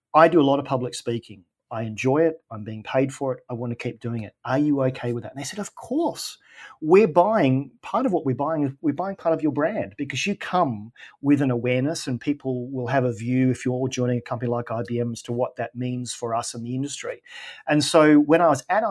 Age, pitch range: 40-59, 125-155 Hz